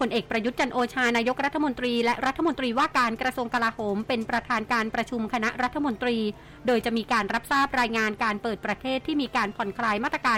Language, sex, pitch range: Thai, female, 210-255 Hz